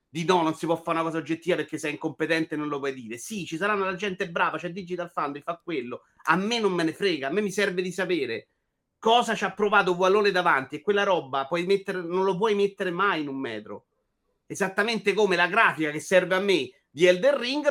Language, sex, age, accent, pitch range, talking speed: Italian, male, 30-49, native, 165-205 Hz, 245 wpm